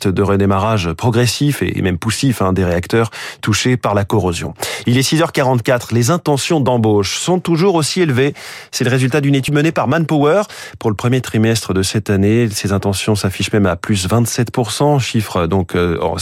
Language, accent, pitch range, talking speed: French, French, 105-145 Hz, 180 wpm